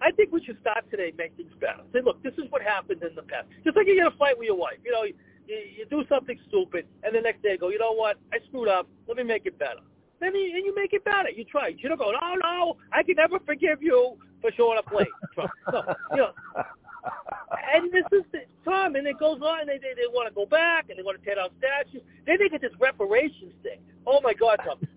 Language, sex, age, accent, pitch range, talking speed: English, male, 40-59, American, 225-340 Hz, 270 wpm